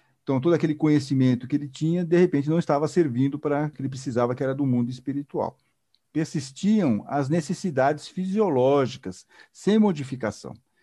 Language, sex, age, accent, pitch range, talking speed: Portuguese, male, 50-69, Brazilian, 130-165 Hz, 155 wpm